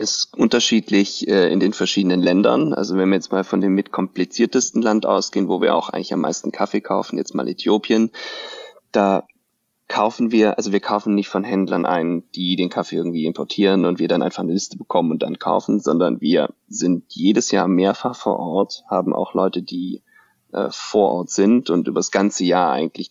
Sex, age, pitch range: male, 40-59, 90-110 Hz